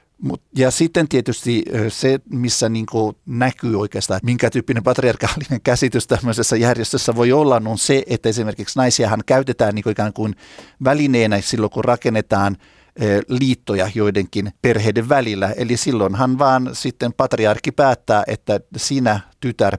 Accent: native